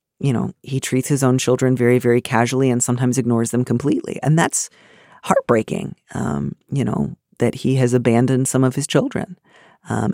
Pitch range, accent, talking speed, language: 115-135 Hz, American, 180 wpm, English